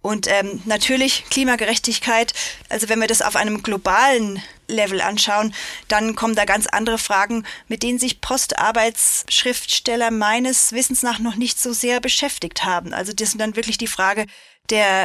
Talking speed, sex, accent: 160 wpm, female, German